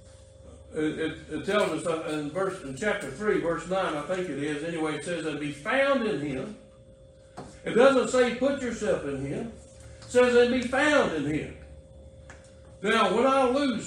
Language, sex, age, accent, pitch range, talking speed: English, male, 60-79, American, 145-230 Hz, 180 wpm